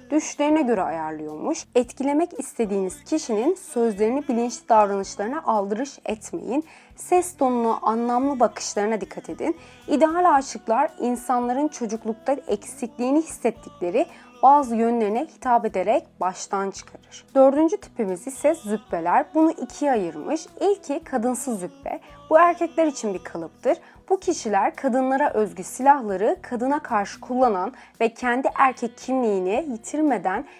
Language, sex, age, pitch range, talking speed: Turkish, female, 30-49, 210-290 Hz, 110 wpm